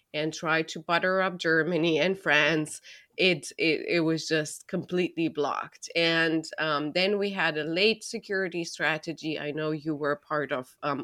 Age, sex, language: 30-49, female, English